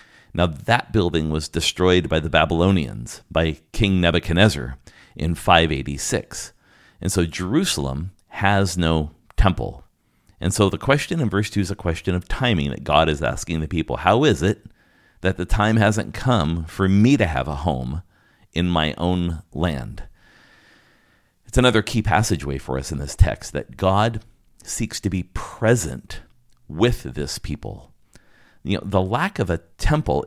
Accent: American